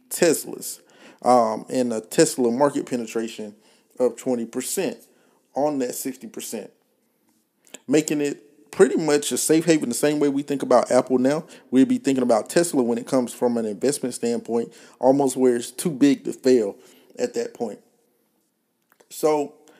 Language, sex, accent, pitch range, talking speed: English, male, American, 120-155 Hz, 150 wpm